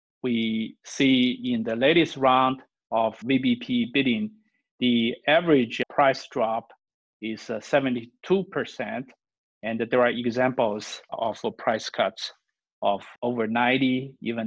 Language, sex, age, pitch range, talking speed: English, male, 50-69, 125-165 Hz, 110 wpm